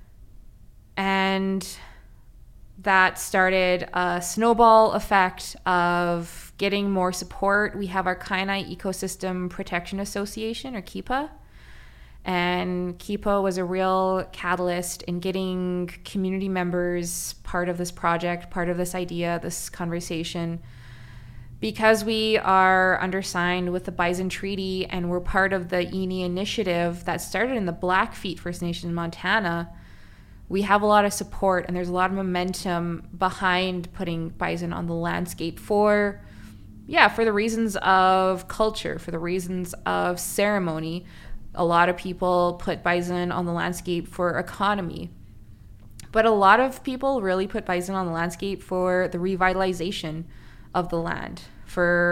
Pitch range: 170-195 Hz